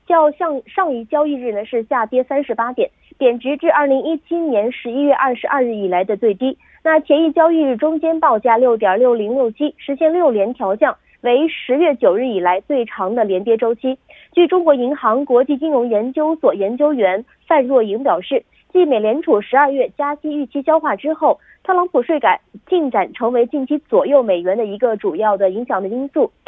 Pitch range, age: 225-300 Hz, 20-39